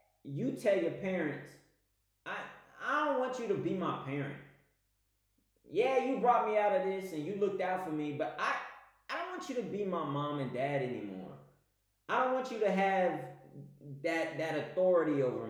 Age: 30-49